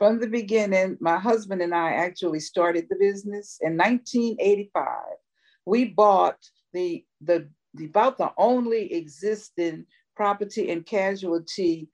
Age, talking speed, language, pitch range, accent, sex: 50-69, 125 wpm, English, 175-250 Hz, American, female